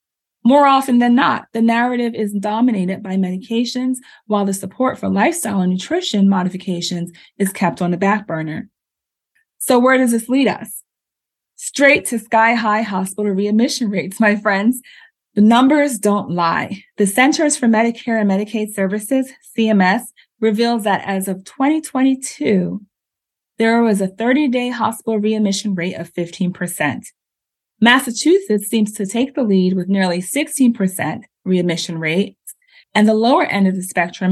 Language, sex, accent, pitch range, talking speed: English, female, American, 190-240 Hz, 145 wpm